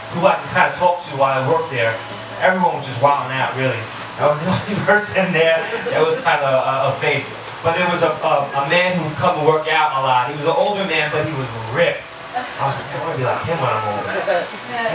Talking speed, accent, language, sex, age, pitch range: 270 wpm, American, English, male, 20-39, 140-180 Hz